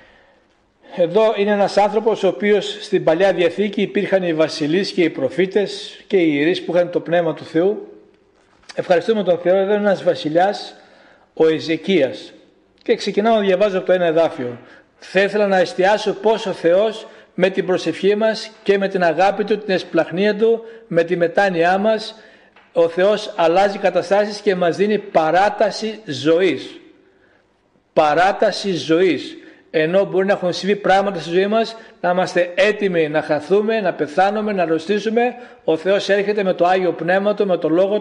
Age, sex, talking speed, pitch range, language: 60-79, male, 160 wpm, 175-210 Hz, Greek